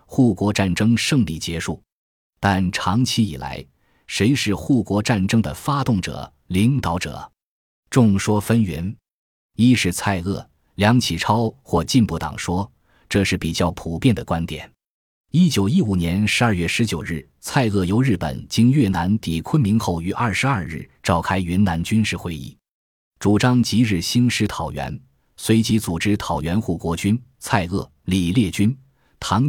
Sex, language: male, Chinese